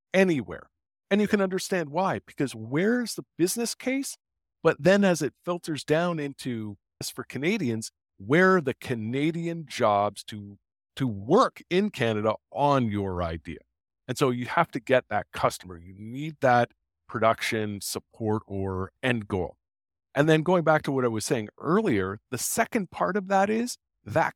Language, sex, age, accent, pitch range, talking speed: English, male, 50-69, American, 105-160 Hz, 165 wpm